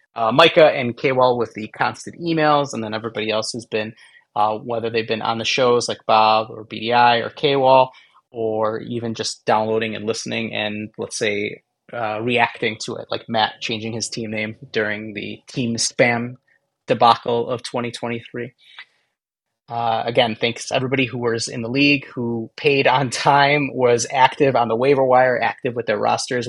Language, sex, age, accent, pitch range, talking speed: English, male, 30-49, American, 110-125 Hz, 175 wpm